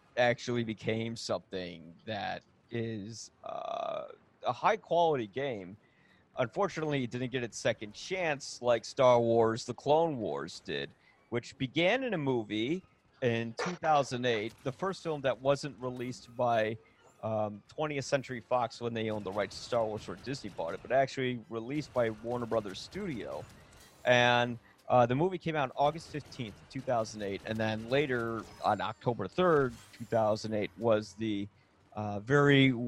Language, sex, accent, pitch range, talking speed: English, male, American, 115-140 Hz, 150 wpm